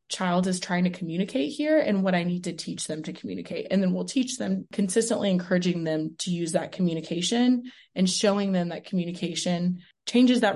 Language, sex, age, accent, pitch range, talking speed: English, female, 20-39, American, 180-220 Hz, 195 wpm